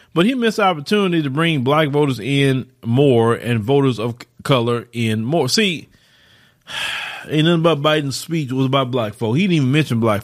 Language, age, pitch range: English, 30-49, 125-165 Hz